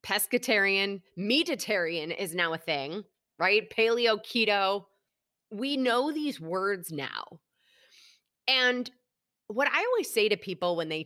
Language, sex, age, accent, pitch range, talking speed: English, female, 30-49, American, 180-245 Hz, 125 wpm